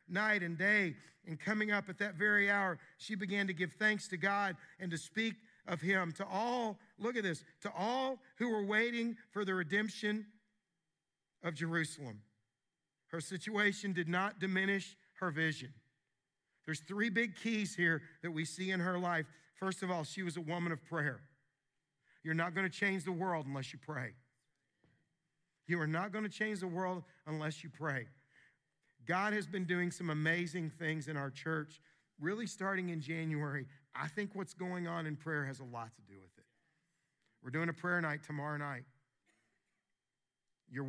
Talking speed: 175 wpm